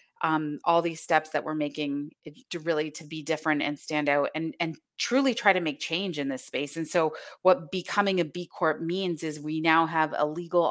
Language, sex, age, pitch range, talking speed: English, female, 30-49, 150-175 Hz, 220 wpm